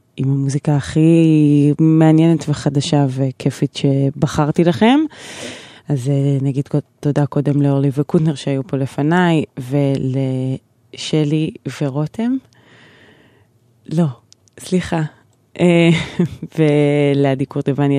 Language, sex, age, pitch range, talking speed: Hebrew, female, 20-39, 140-165 Hz, 75 wpm